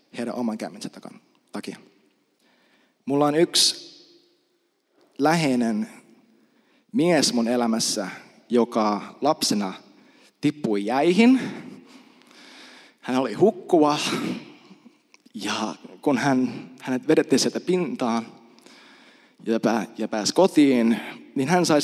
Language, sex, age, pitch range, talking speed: Finnish, male, 20-39, 120-185 Hz, 90 wpm